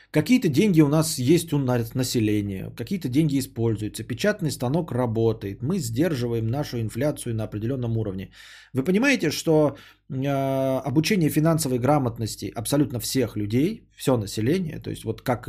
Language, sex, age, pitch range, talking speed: Bulgarian, male, 20-39, 115-165 Hz, 140 wpm